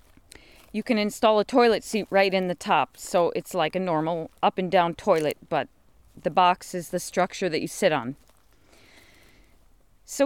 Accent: American